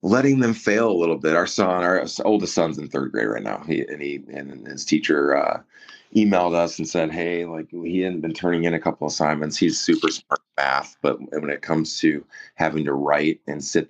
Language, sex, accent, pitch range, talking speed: English, male, American, 75-85 Hz, 230 wpm